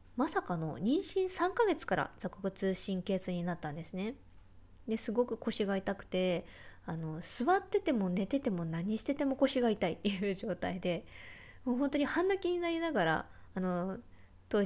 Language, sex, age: Japanese, female, 20-39